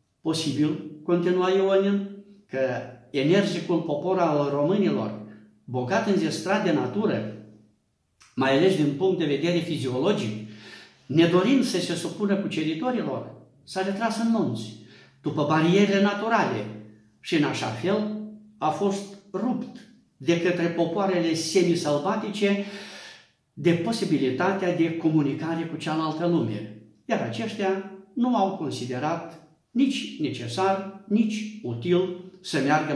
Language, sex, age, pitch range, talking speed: Romanian, male, 60-79, 135-200 Hz, 115 wpm